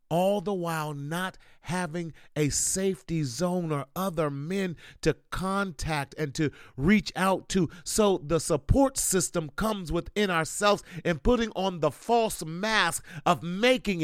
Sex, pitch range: male, 145-210 Hz